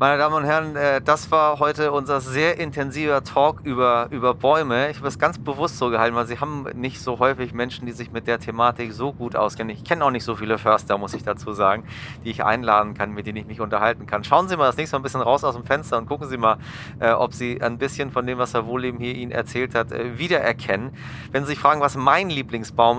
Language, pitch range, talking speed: German, 115-135 Hz, 245 wpm